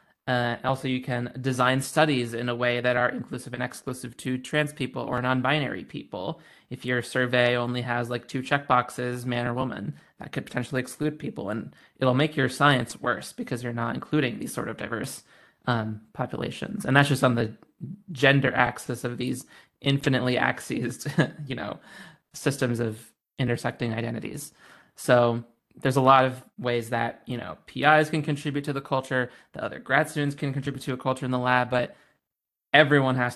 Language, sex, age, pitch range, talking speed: English, male, 20-39, 120-135 Hz, 180 wpm